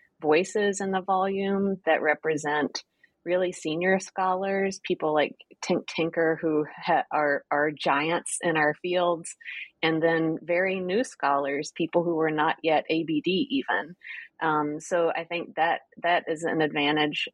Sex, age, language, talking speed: female, 30-49, English, 140 wpm